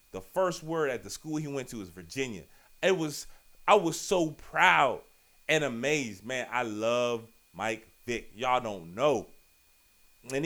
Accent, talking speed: American, 160 wpm